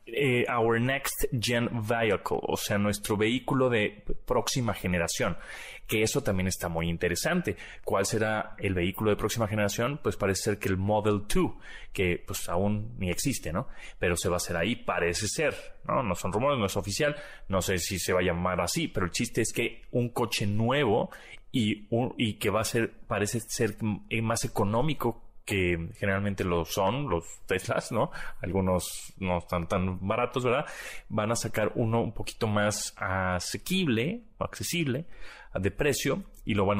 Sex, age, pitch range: male, 30-49, 95-115 Hz